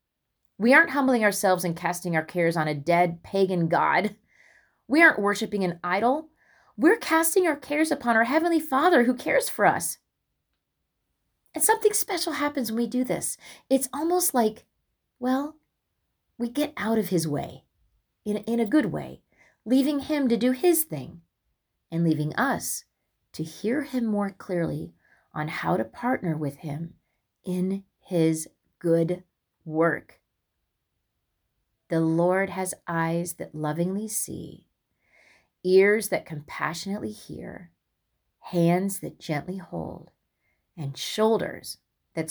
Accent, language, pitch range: American, English, 155-225 Hz